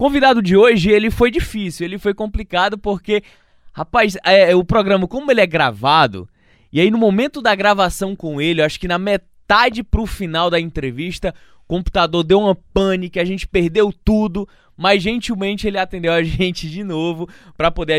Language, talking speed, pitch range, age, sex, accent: Portuguese, 175 wpm, 140-195 Hz, 20-39, male, Brazilian